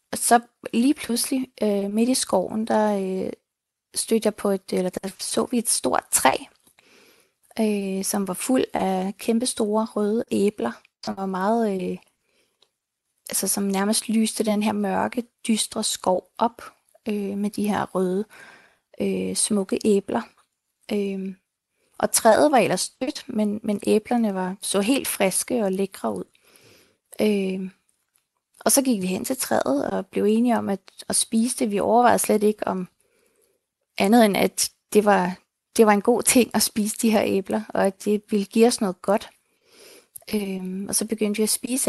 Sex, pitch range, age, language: female, 195-235 Hz, 20-39, Danish